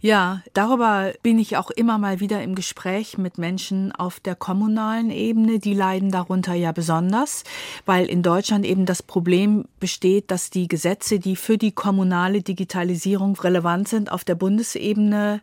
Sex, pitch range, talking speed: female, 175-210 Hz, 160 wpm